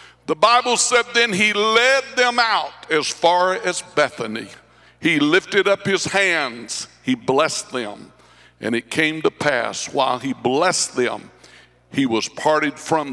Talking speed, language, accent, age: 150 wpm, English, American, 60-79